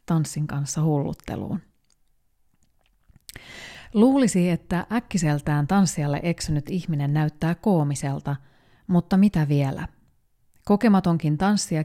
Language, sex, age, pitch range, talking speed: Finnish, female, 30-49, 150-195 Hz, 80 wpm